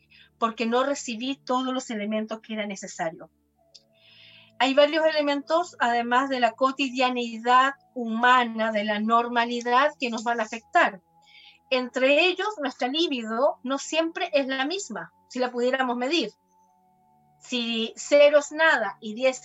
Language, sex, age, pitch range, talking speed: Spanish, female, 40-59, 215-280 Hz, 135 wpm